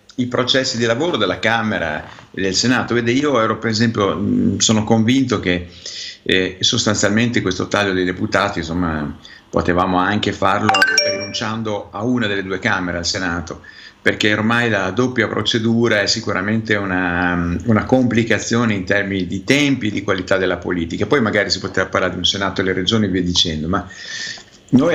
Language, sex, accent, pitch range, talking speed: Italian, male, native, 95-115 Hz, 175 wpm